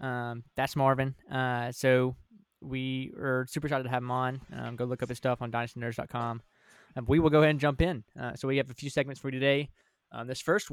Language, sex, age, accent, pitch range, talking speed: English, male, 20-39, American, 130-150 Hz, 230 wpm